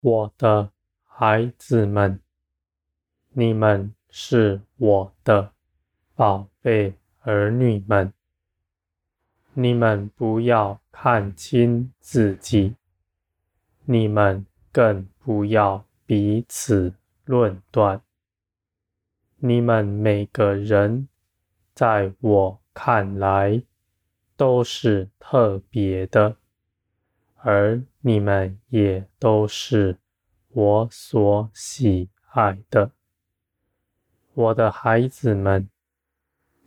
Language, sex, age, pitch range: Chinese, male, 20-39, 95-115 Hz